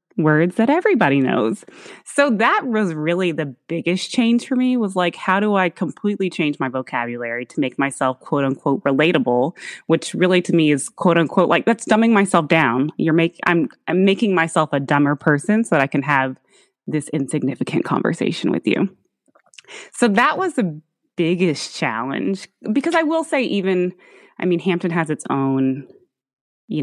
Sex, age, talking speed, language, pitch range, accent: female, 20-39, 170 wpm, English, 140-190 Hz, American